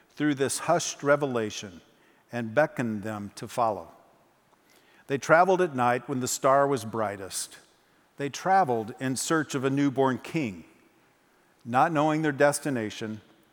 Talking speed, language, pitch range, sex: 135 wpm, English, 115-145 Hz, male